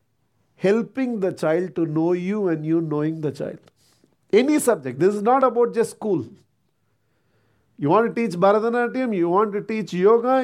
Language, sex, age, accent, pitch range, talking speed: English, male, 50-69, Indian, 170-255 Hz, 165 wpm